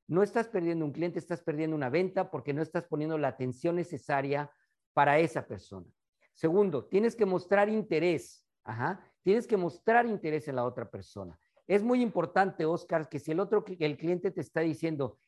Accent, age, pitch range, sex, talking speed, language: Mexican, 50-69, 140-180 Hz, male, 180 wpm, English